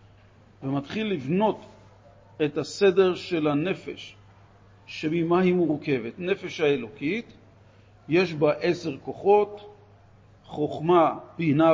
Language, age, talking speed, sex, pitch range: Hebrew, 50-69, 85 wpm, male, 110-170 Hz